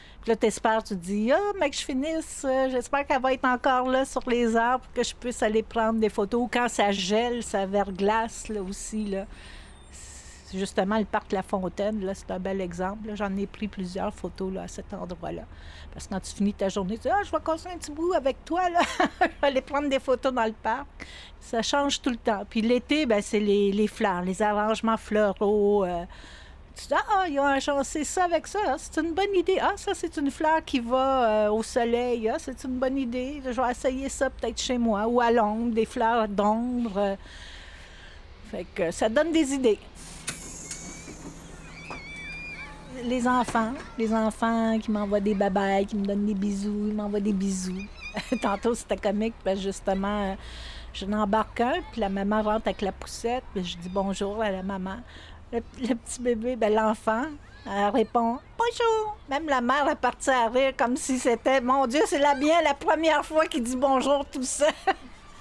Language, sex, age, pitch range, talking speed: French, female, 60-79, 205-265 Hz, 205 wpm